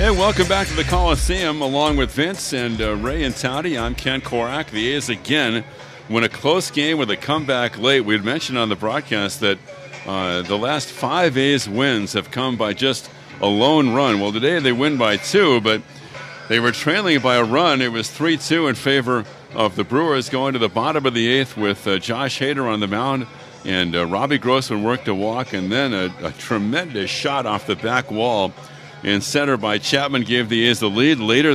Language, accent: English, American